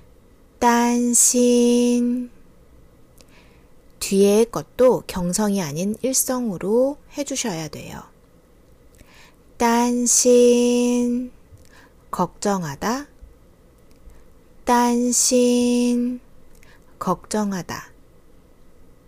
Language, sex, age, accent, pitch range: Korean, female, 20-39, native, 185-245 Hz